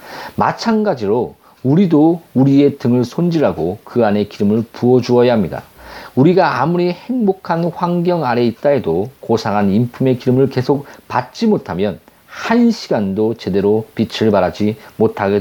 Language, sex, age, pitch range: Korean, male, 40-59, 120-175 Hz